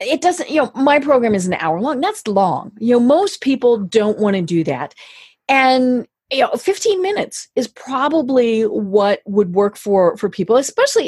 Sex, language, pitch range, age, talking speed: female, English, 185-265 Hz, 40-59, 190 wpm